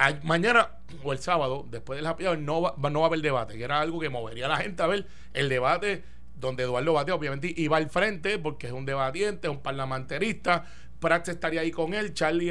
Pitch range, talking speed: 135-180 Hz, 220 wpm